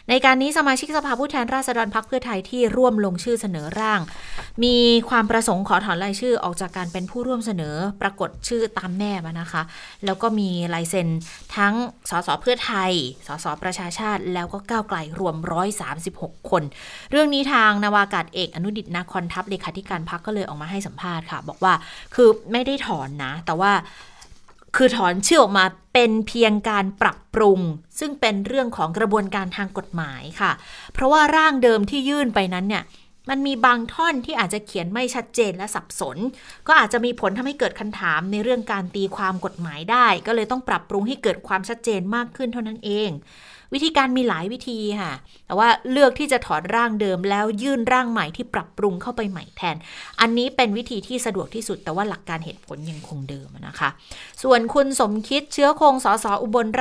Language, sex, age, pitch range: Thai, female, 20-39, 185-245 Hz